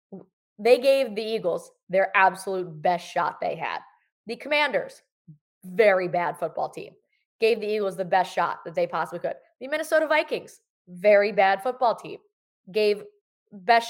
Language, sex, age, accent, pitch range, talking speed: English, female, 20-39, American, 185-245 Hz, 150 wpm